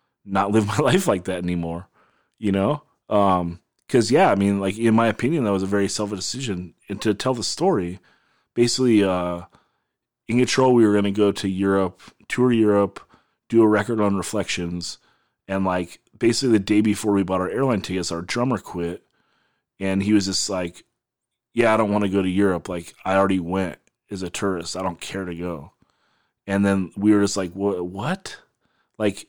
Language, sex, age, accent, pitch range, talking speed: English, male, 30-49, American, 90-110 Hz, 195 wpm